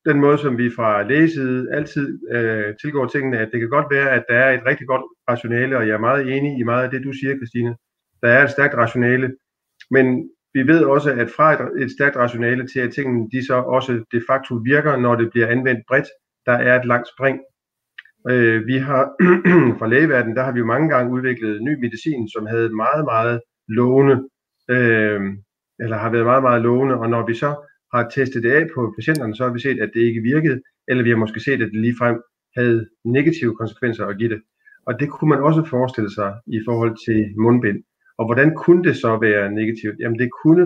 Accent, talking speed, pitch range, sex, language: native, 215 wpm, 115-135 Hz, male, Danish